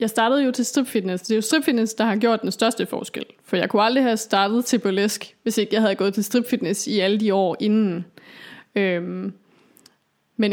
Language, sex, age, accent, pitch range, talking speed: Danish, female, 20-39, native, 210-255 Hz, 210 wpm